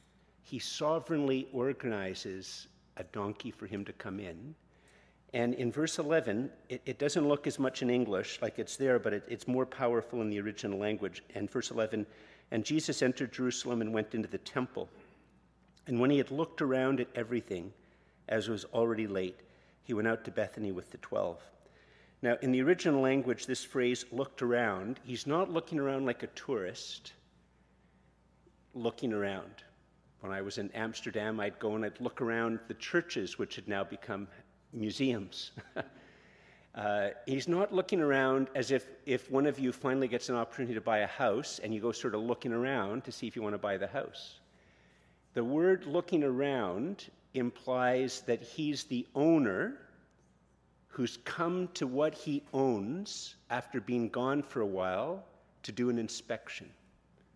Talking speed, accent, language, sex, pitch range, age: 170 wpm, American, English, male, 110-135 Hz, 50-69